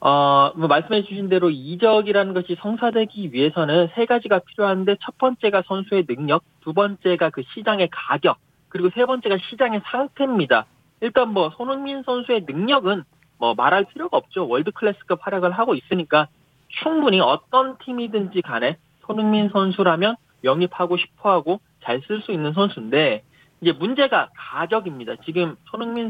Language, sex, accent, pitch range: Korean, male, native, 165-230 Hz